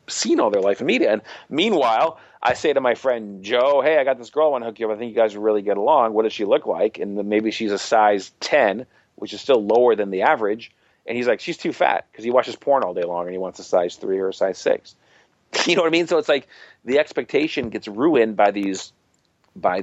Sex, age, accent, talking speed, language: male, 40-59, American, 270 wpm, English